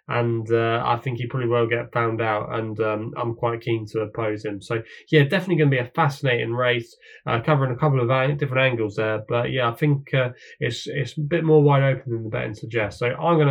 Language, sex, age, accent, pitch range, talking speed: English, male, 20-39, British, 115-140 Hz, 240 wpm